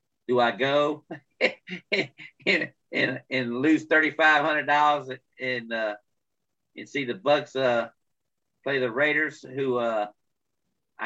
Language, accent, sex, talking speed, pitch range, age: English, American, male, 125 wpm, 115-135 Hz, 40-59